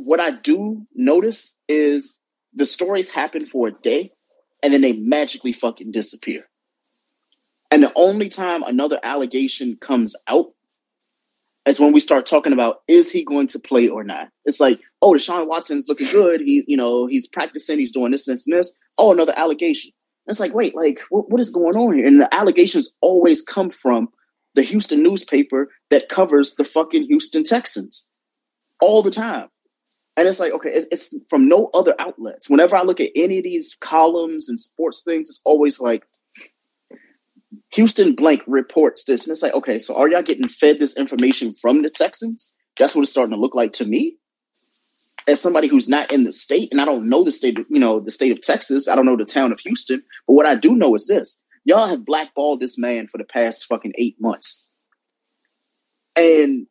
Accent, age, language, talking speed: American, 30-49, English, 190 wpm